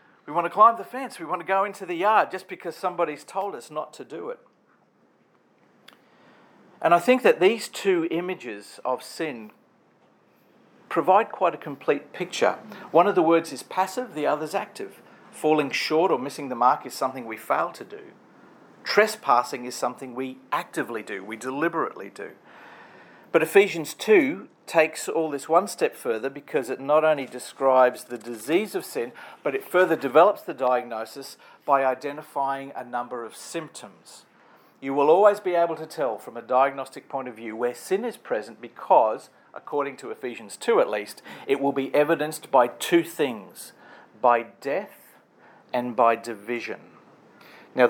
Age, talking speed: 50-69, 170 wpm